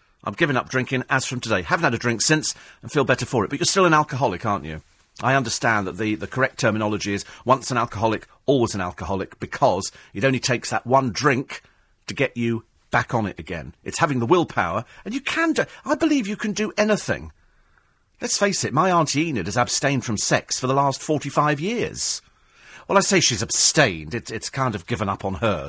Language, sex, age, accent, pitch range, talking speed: English, male, 40-59, British, 105-150 Hz, 220 wpm